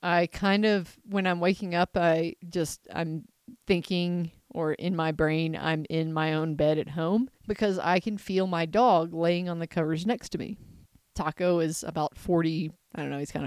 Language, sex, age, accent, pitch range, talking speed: English, female, 30-49, American, 160-205 Hz, 195 wpm